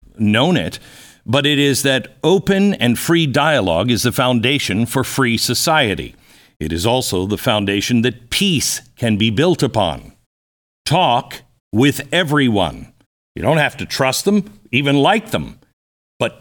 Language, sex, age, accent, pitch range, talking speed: English, male, 60-79, American, 105-145 Hz, 145 wpm